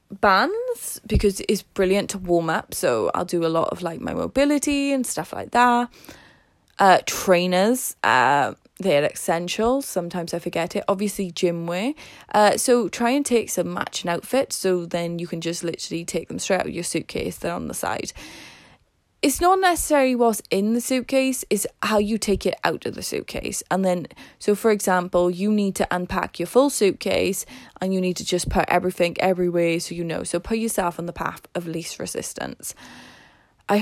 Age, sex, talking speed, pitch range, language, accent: 10-29, female, 190 wpm, 175-220 Hz, English, British